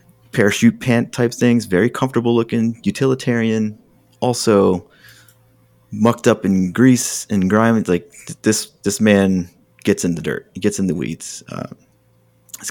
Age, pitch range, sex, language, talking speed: 30-49, 95-120 Hz, male, English, 145 wpm